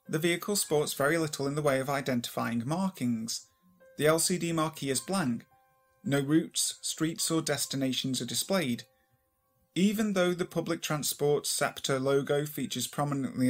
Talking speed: 140 wpm